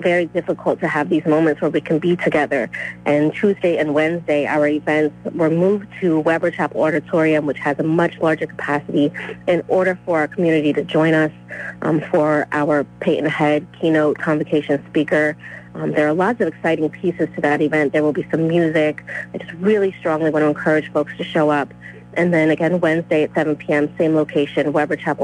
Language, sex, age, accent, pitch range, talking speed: English, female, 30-49, American, 150-170 Hz, 195 wpm